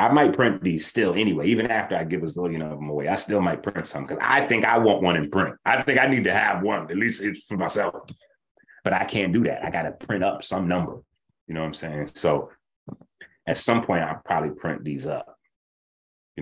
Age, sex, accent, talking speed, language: 30-49, male, American, 240 wpm, English